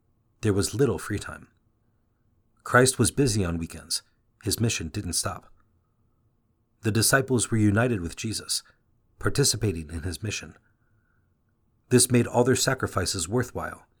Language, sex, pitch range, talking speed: English, male, 95-120 Hz, 130 wpm